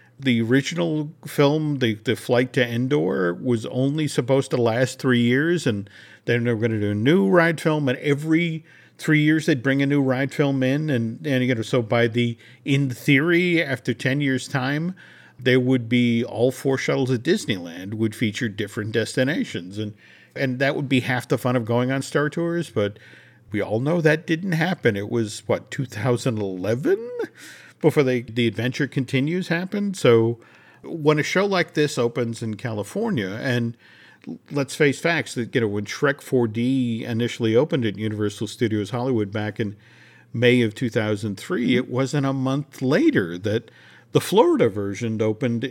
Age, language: 50-69, English